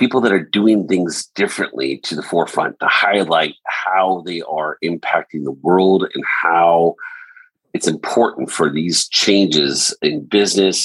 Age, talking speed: 50-69, 145 wpm